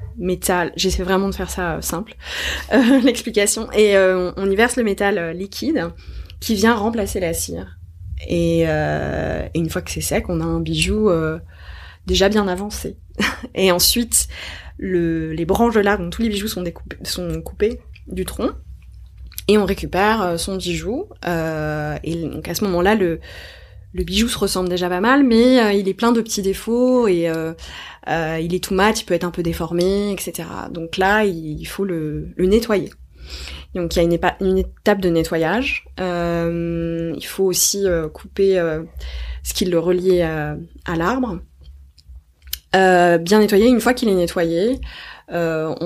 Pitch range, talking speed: 160-200 Hz, 175 wpm